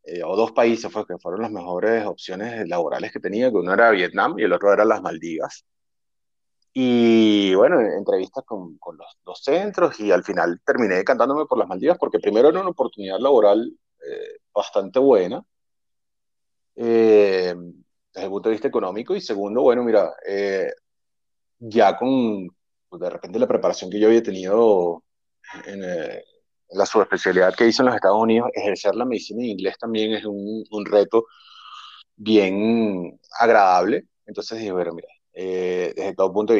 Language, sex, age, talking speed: Spanish, male, 30-49, 170 wpm